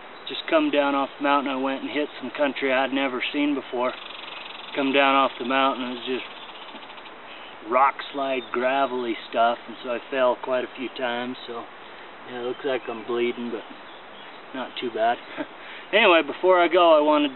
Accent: American